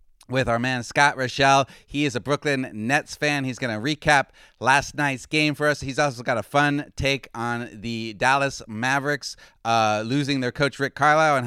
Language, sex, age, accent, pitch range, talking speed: English, male, 30-49, American, 115-145 Hz, 195 wpm